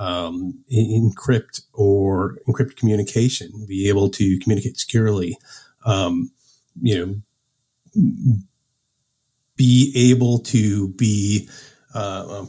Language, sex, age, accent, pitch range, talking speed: English, male, 30-49, American, 100-130 Hz, 80 wpm